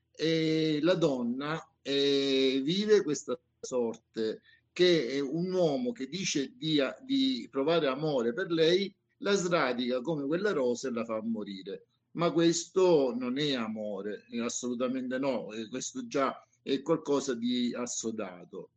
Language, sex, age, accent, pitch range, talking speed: Italian, male, 50-69, native, 135-180 Hz, 130 wpm